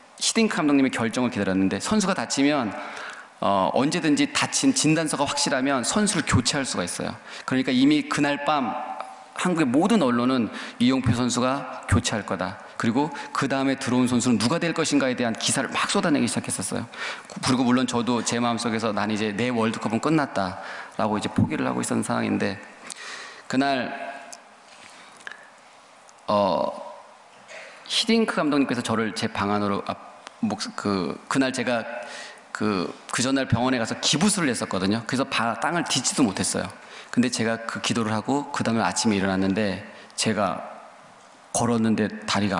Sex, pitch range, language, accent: male, 115-150 Hz, Korean, native